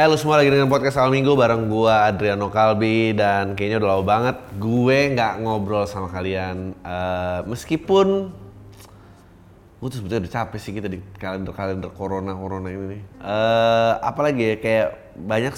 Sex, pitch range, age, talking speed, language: male, 100-145 Hz, 20-39, 155 wpm, Indonesian